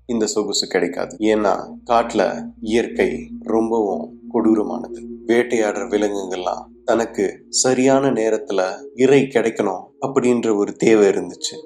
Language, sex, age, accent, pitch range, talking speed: Tamil, male, 30-49, native, 105-135 Hz, 65 wpm